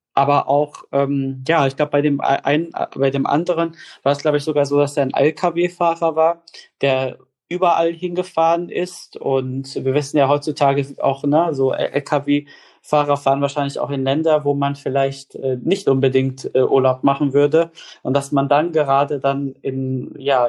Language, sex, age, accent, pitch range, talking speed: German, male, 20-39, German, 135-150 Hz, 175 wpm